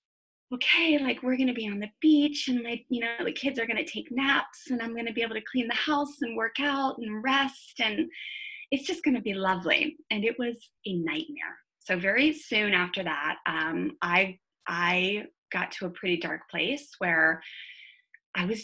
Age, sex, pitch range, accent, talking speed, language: 20-39, female, 190-290 Hz, American, 205 wpm, English